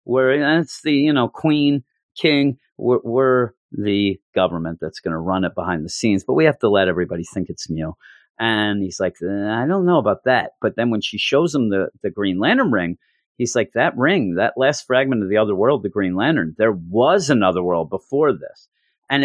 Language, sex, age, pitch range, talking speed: English, male, 40-59, 100-135 Hz, 210 wpm